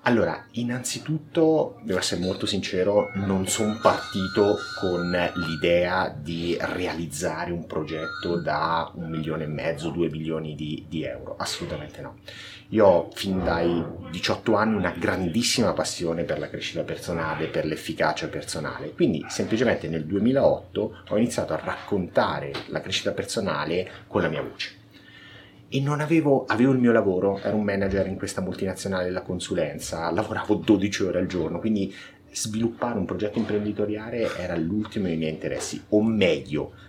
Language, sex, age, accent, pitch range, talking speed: Italian, male, 30-49, native, 85-105 Hz, 145 wpm